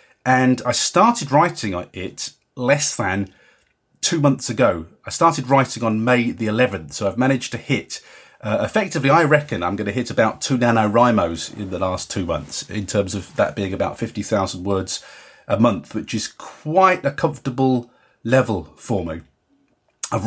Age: 30-49